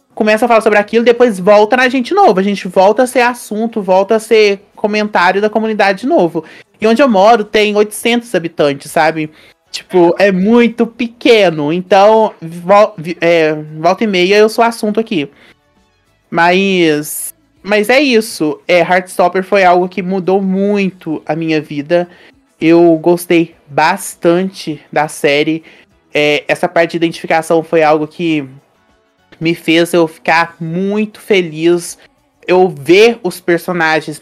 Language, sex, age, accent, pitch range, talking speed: Portuguese, male, 20-39, Brazilian, 160-205 Hz, 145 wpm